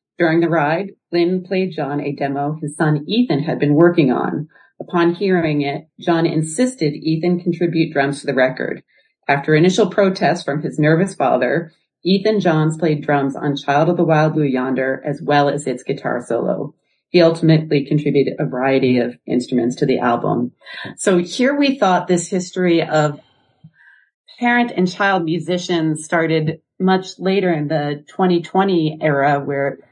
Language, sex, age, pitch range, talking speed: English, female, 40-59, 145-180 Hz, 160 wpm